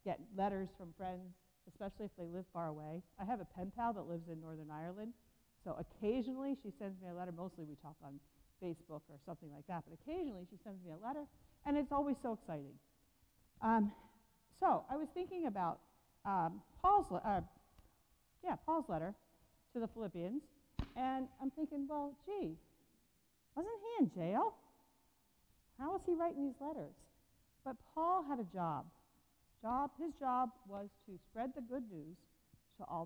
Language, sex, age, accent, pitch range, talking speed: English, female, 40-59, American, 180-275 Hz, 170 wpm